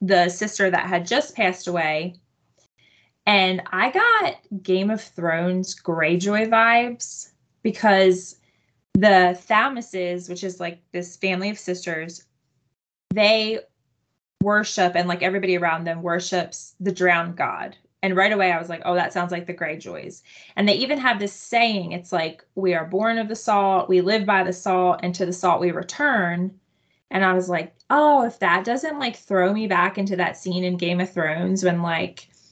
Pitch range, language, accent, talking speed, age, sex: 175-205 Hz, English, American, 175 wpm, 20-39, female